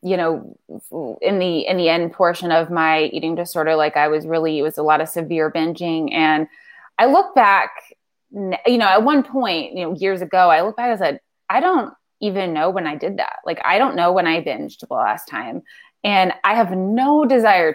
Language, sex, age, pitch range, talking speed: English, female, 20-39, 165-225 Hz, 220 wpm